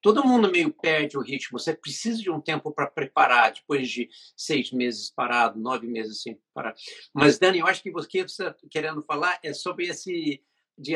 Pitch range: 150-205 Hz